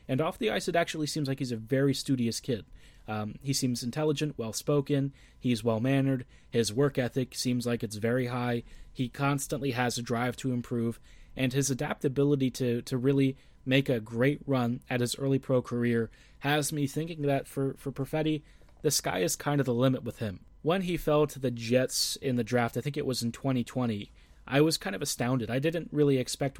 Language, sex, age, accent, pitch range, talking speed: English, male, 30-49, American, 125-145 Hz, 205 wpm